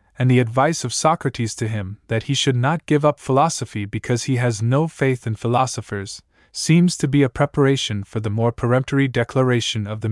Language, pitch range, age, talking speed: English, 110-135 Hz, 20-39, 195 wpm